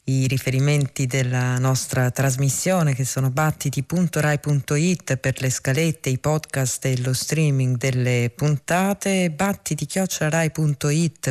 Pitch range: 130-160 Hz